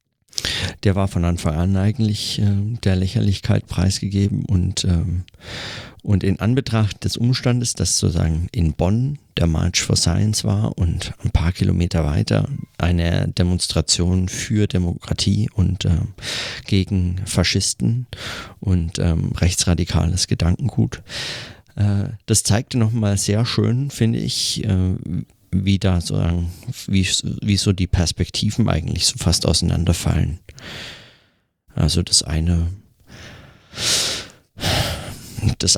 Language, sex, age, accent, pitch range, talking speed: German, male, 40-59, German, 90-115 Hz, 115 wpm